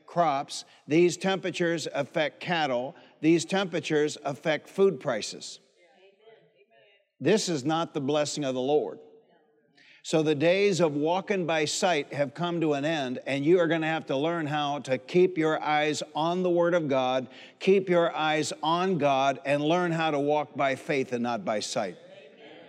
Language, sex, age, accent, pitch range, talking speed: English, male, 60-79, American, 145-175 Hz, 170 wpm